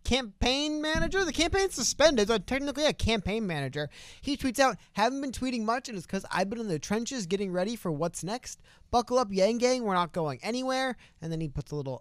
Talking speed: 220 wpm